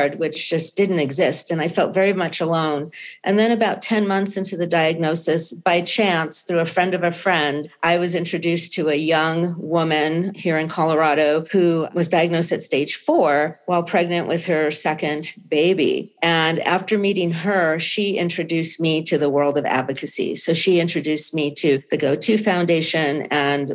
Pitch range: 155-185 Hz